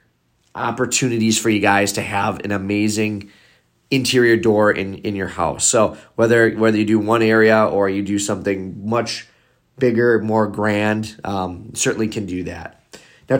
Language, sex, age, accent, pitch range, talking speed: English, male, 30-49, American, 95-115 Hz, 155 wpm